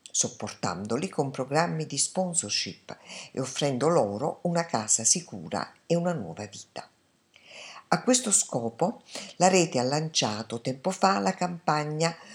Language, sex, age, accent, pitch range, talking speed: Italian, female, 50-69, native, 130-185 Hz, 125 wpm